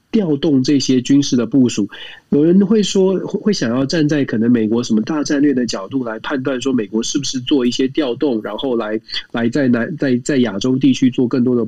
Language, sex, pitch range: Chinese, male, 120-150 Hz